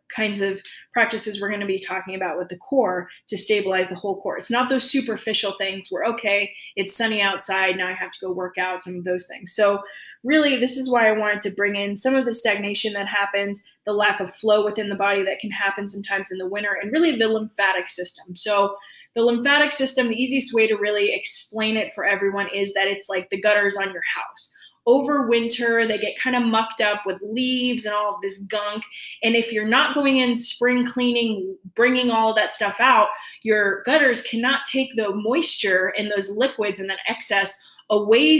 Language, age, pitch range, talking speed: English, 20-39, 195-230 Hz, 215 wpm